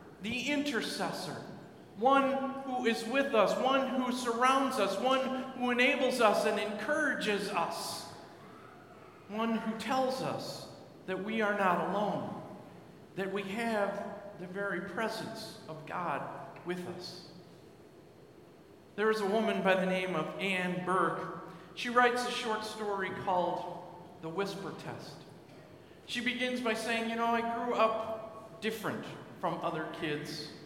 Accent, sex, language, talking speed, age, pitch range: American, male, English, 135 wpm, 50-69, 175-215 Hz